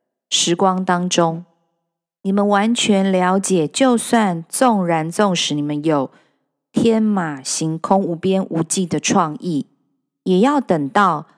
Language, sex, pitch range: Chinese, female, 155-205 Hz